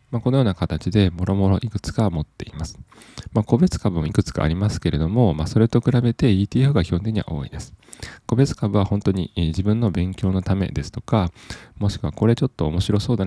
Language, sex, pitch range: Japanese, male, 85-115 Hz